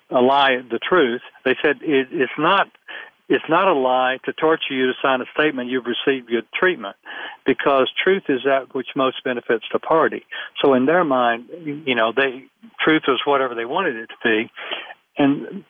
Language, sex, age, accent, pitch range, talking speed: English, male, 60-79, American, 130-155 Hz, 185 wpm